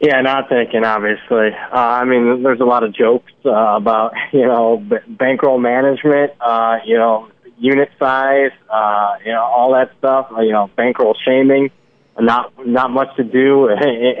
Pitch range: 105-130 Hz